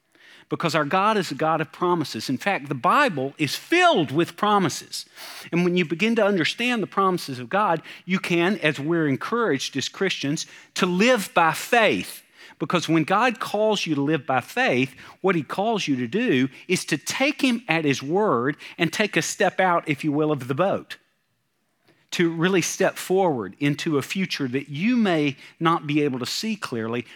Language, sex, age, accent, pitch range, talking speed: English, male, 50-69, American, 145-185 Hz, 190 wpm